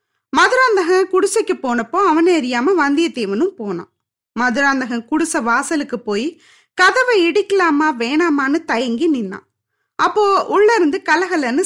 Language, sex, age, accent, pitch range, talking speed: Tamil, female, 20-39, native, 250-380 Hz, 105 wpm